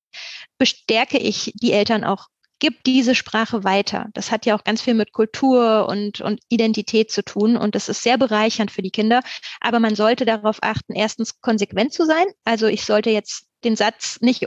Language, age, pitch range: German, 20-39, 205-235 Hz